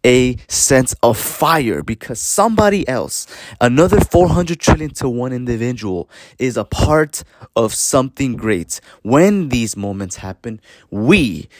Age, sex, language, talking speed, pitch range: 20-39, male, English, 130 wpm, 105-135 Hz